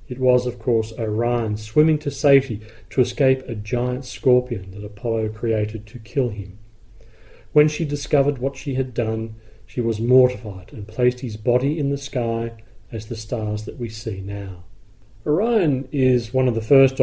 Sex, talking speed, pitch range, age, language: male, 175 wpm, 110-130 Hz, 40-59, English